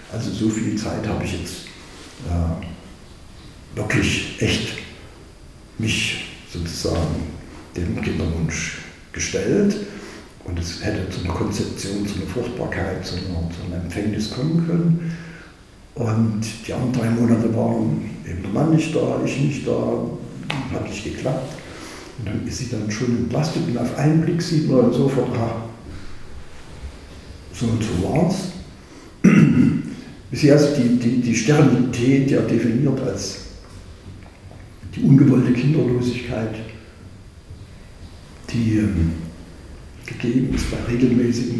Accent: German